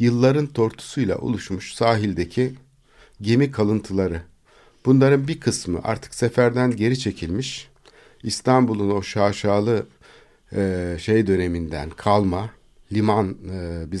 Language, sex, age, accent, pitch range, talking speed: Turkish, male, 60-79, native, 95-120 Hz, 90 wpm